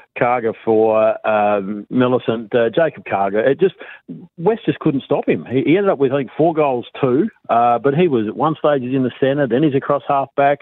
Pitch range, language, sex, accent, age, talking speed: 115-140 Hz, English, male, Australian, 50-69, 225 wpm